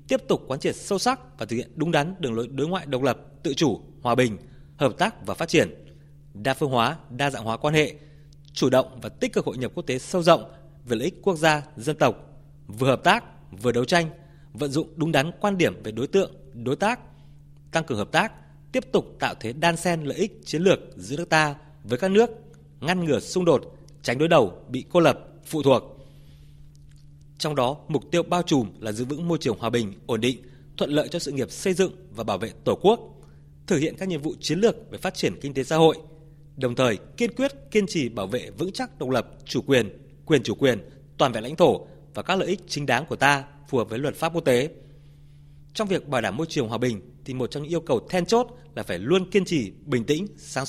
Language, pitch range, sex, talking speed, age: Vietnamese, 125-170 Hz, male, 240 wpm, 20-39